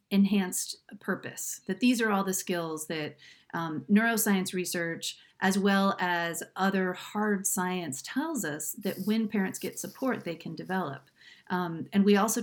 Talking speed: 155 wpm